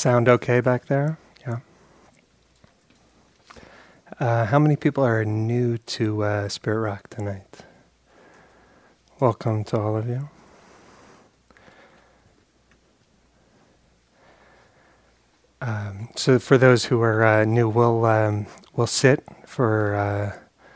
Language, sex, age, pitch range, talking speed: English, male, 30-49, 105-120 Hz, 100 wpm